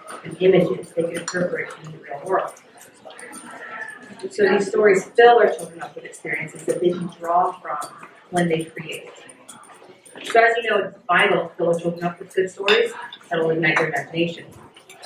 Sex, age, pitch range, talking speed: female, 40-59, 170-220 Hz, 185 wpm